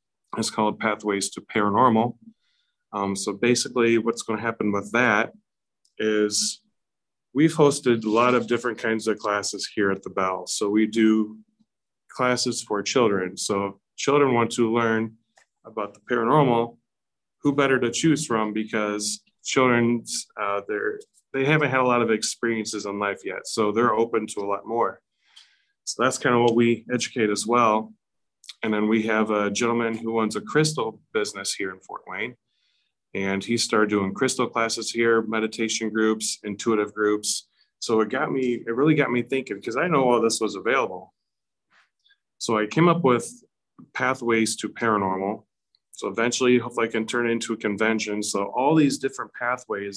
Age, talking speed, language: 30-49, 170 wpm, English